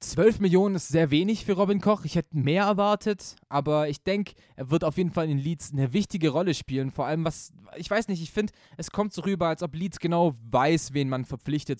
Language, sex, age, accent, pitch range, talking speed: German, male, 20-39, German, 140-175 Hz, 235 wpm